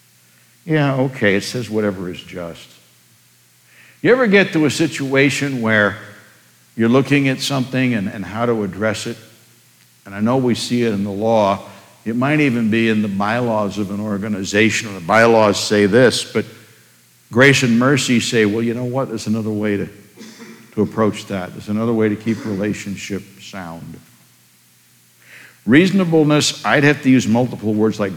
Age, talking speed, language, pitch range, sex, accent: 60-79, 170 wpm, English, 85-115 Hz, male, American